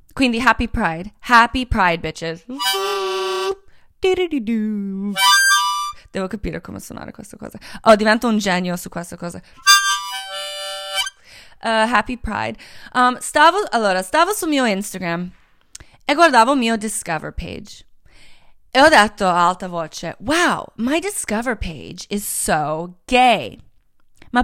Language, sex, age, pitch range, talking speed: Italian, female, 20-39, 190-265 Hz, 115 wpm